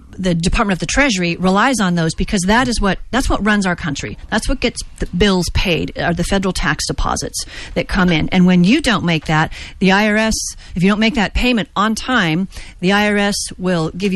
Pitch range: 175-225 Hz